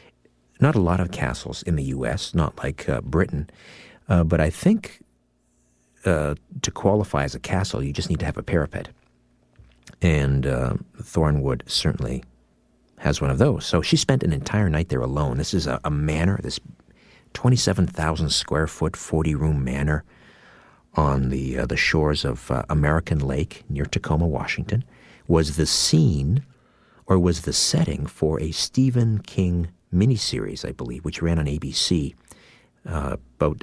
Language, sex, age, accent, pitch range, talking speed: English, male, 50-69, American, 70-90 Hz, 155 wpm